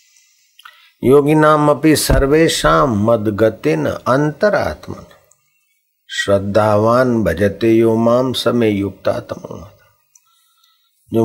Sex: male